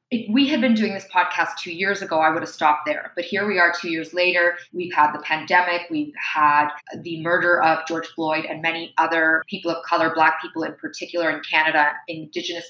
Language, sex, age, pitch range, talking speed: English, female, 20-39, 165-200 Hz, 215 wpm